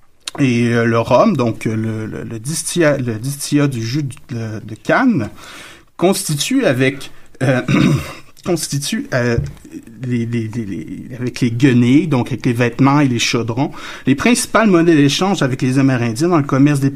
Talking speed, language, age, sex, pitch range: 160 wpm, French, 60-79, male, 115-150 Hz